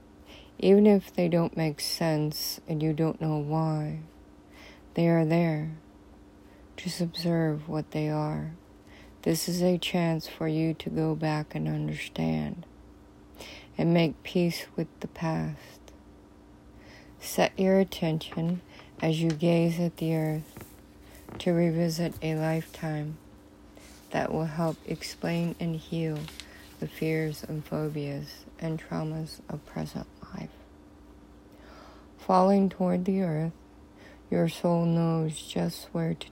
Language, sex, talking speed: English, female, 120 wpm